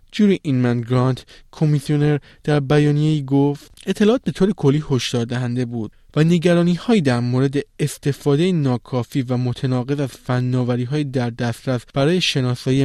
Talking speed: 140 wpm